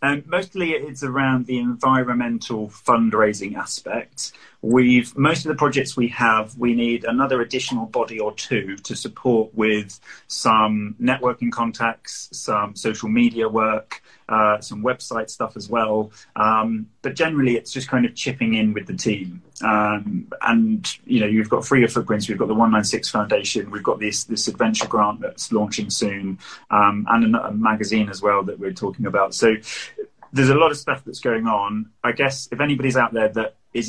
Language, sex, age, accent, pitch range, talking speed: English, male, 30-49, British, 105-125 Hz, 180 wpm